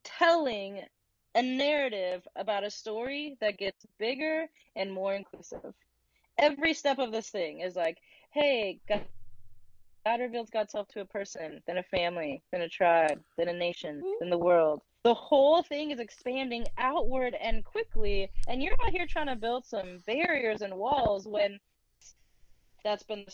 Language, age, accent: English, 20-39, American